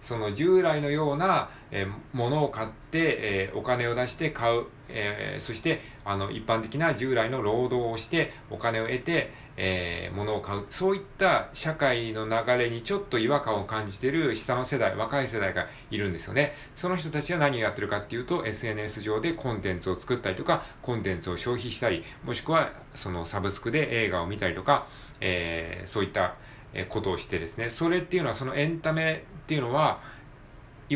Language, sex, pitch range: Japanese, male, 105-145 Hz